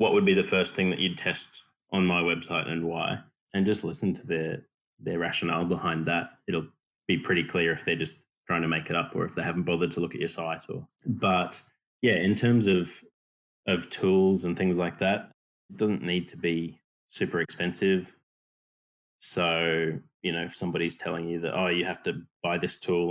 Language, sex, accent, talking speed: English, male, Australian, 205 wpm